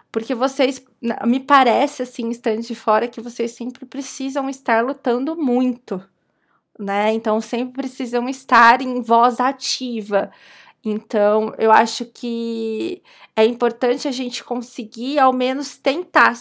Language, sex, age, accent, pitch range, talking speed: Portuguese, female, 20-39, Brazilian, 220-250 Hz, 130 wpm